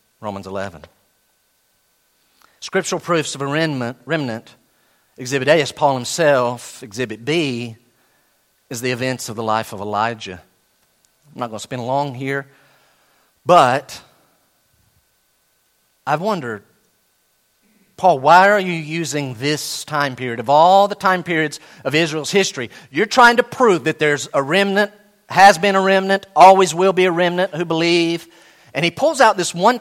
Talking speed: 150 wpm